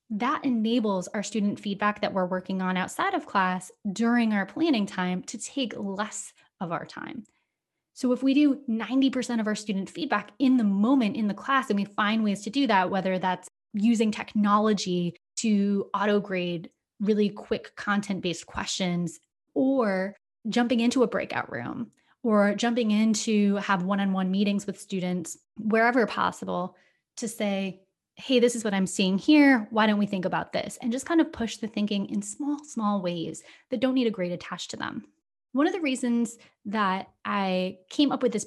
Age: 20-39